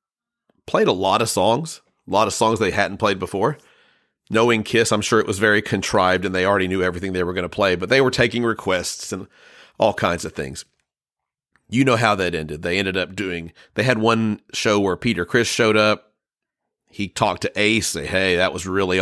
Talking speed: 215 wpm